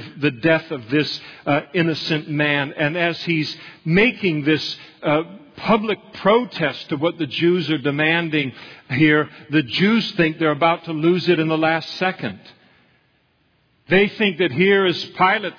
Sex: male